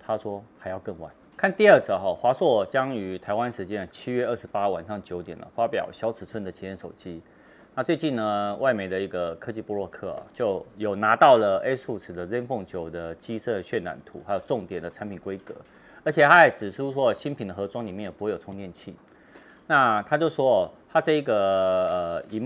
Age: 30-49